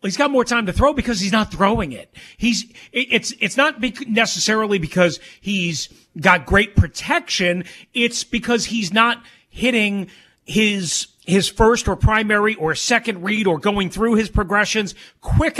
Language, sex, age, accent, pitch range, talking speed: English, male, 40-59, American, 185-245 Hz, 155 wpm